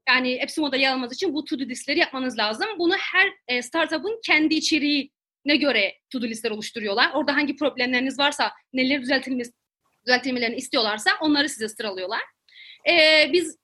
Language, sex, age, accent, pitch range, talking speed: Turkish, female, 30-49, native, 250-320 Hz, 135 wpm